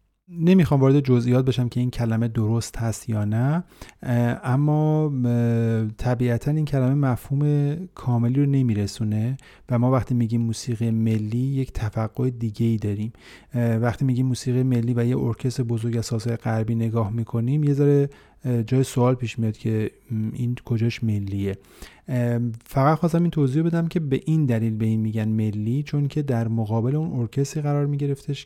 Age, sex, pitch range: 30-49, male, 115-140 Hz